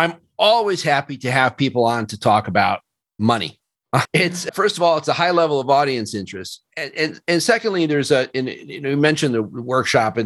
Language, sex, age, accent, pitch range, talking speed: English, male, 40-59, American, 110-145 Hz, 195 wpm